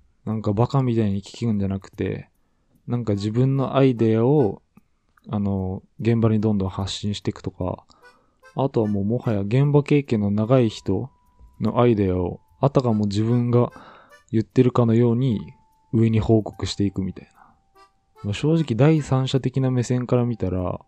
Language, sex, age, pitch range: Japanese, male, 20-39, 100-125 Hz